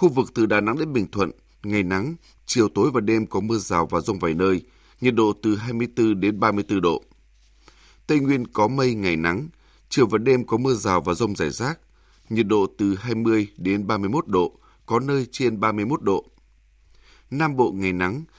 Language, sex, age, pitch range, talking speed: Vietnamese, male, 20-39, 95-120 Hz, 195 wpm